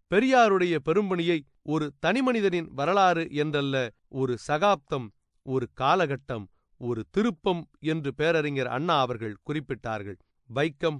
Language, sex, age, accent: Tamil, male, 30-49, native